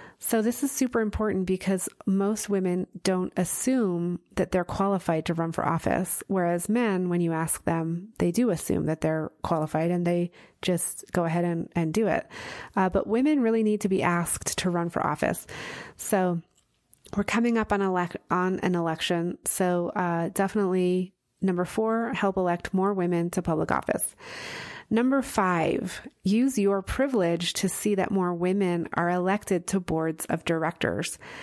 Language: English